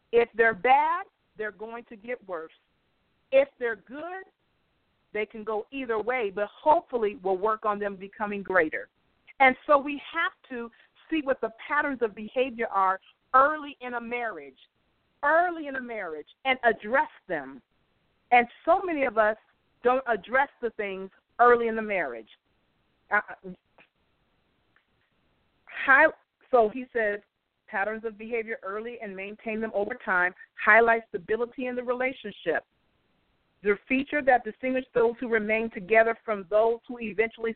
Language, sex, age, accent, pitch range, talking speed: English, female, 40-59, American, 200-255 Hz, 145 wpm